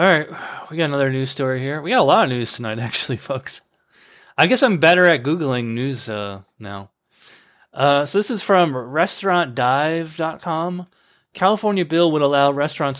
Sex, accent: male, American